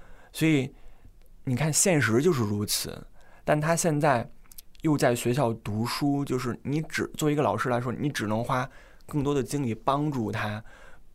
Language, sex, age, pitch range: Chinese, male, 20-39, 110-130 Hz